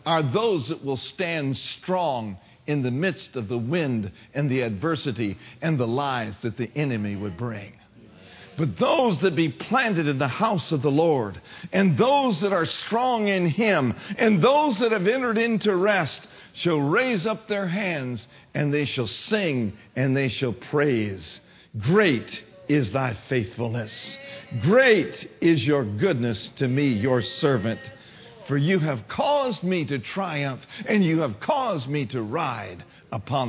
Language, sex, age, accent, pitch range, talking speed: English, male, 50-69, American, 125-190 Hz, 160 wpm